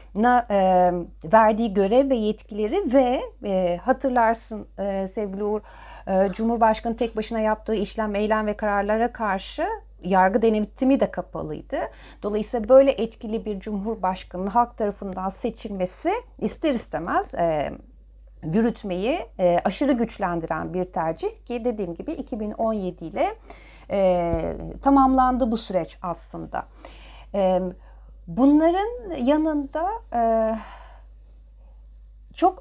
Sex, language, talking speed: female, Turkish, 90 wpm